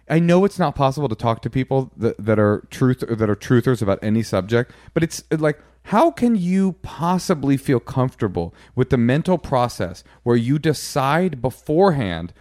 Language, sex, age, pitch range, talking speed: English, male, 30-49, 110-160 Hz, 180 wpm